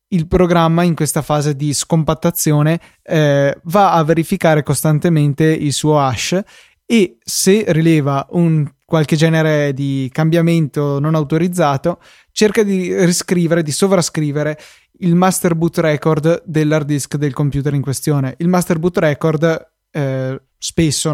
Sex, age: male, 20-39